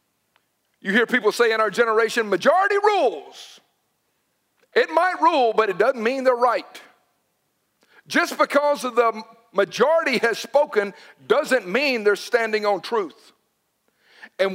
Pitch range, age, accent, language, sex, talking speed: 200-260 Hz, 50-69, American, English, male, 130 wpm